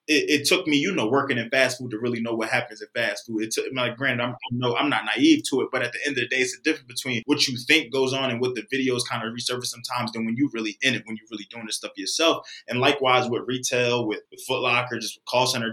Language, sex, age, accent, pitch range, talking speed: English, male, 20-39, American, 115-135 Hz, 300 wpm